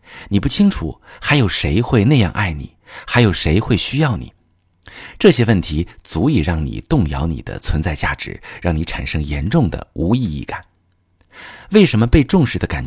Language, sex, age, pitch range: Chinese, male, 50-69, 85-120 Hz